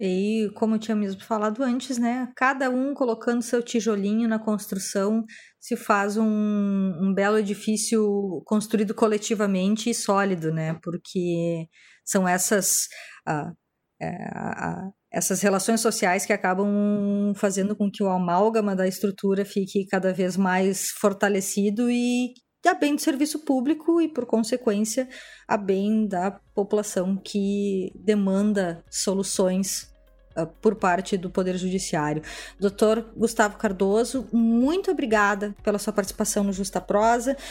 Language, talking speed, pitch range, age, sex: Portuguese, 130 wpm, 195-235 Hz, 20-39, female